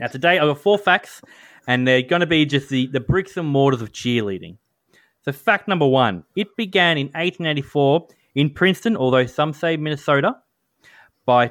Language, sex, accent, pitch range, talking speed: English, male, Australian, 115-155 Hz, 190 wpm